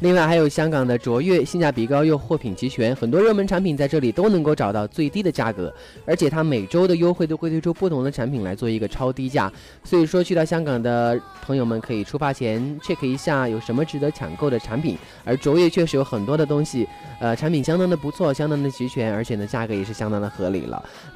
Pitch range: 115-155 Hz